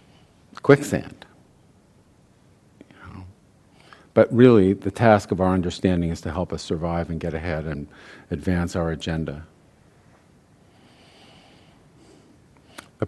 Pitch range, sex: 90-120 Hz, male